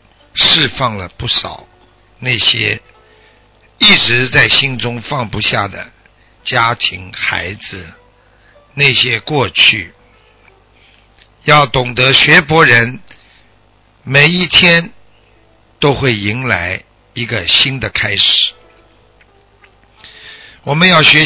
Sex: male